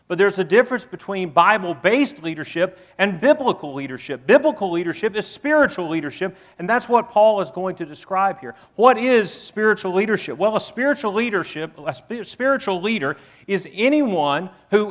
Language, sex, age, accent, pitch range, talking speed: English, male, 40-59, American, 160-215 Hz, 155 wpm